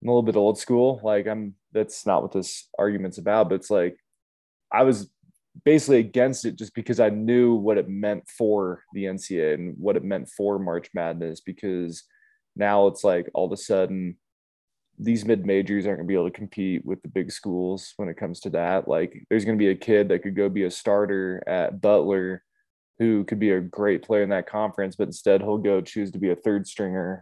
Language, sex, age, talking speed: English, male, 20-39, 215 wpm